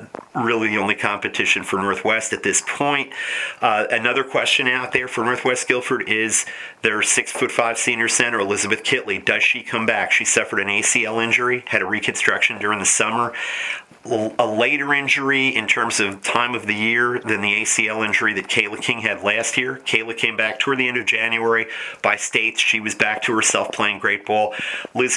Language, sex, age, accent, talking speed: English, male, 40-59, American, 190 wpm